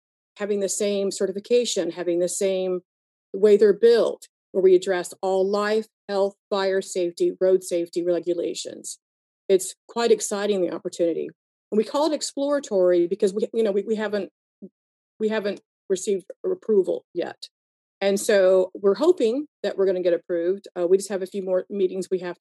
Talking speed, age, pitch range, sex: 170 wpm, 40-59, 180-230 Hz, female